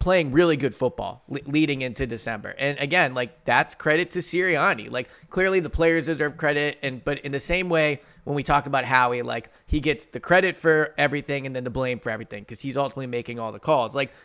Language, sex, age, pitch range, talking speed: English, male, 20-39, 125-165 Hz, 220 wpm